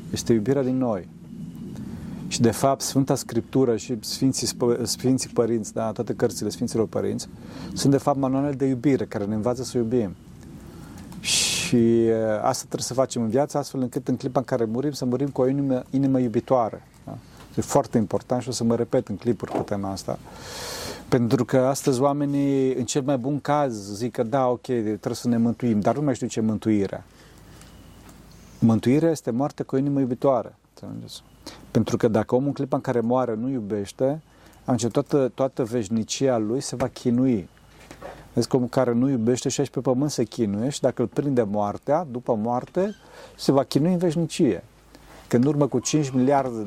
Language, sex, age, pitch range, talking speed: Romanian, male, 40-59, 115-140 Hz, 185 wpm